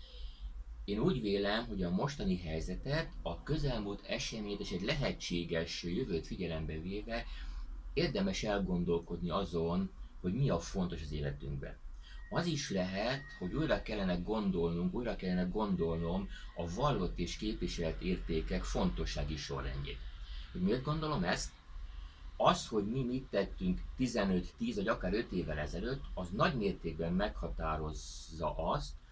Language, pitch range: Hungarian, 75-115 Hz